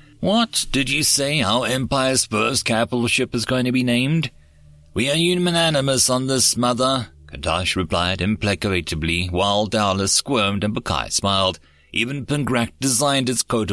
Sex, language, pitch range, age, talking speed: male, English, 100-140 Hz, 40-59, 150 wpm